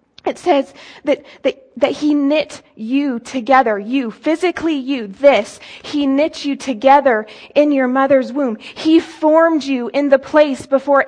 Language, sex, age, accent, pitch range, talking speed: English, female, 20-39, American, 265-345 Hz, 150 wpm